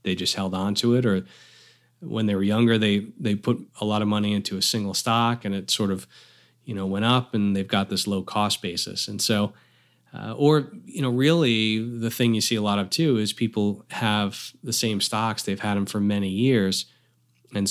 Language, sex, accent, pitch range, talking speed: English, male, American, 100-120 Hz, 220 wpm